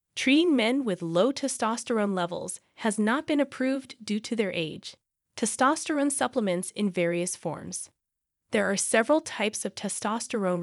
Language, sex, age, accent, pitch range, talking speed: English, female, 30-49, American, 180-255 Hz, 140 wpm